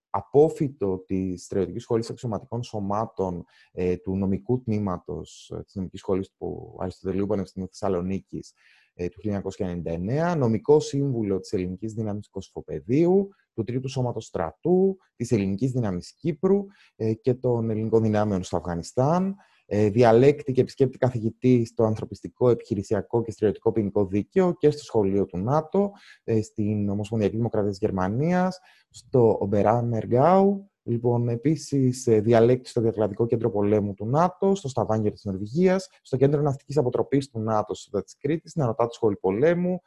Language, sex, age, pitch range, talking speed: Greek, male, 30-49, 100-135 Hz, 130 wpm